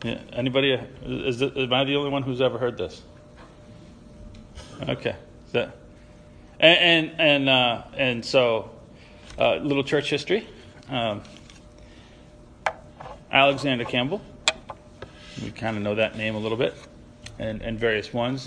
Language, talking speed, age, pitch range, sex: English, 135 wpm, 40-59, 115-135 Hz, male